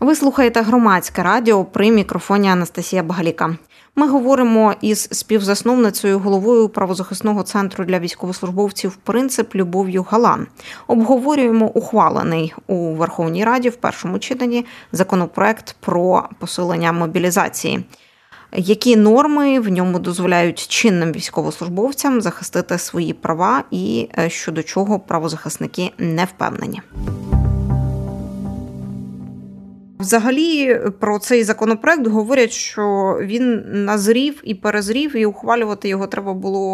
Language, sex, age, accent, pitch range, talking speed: Ukrainian, female, 20-39, native, 185-235 Hz, 105 wpm